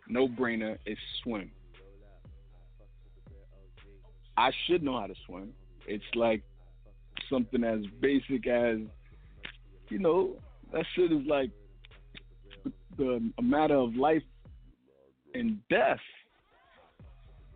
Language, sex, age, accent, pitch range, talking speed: English, male, 50-69, American, 115-145 Hz, 95 wpm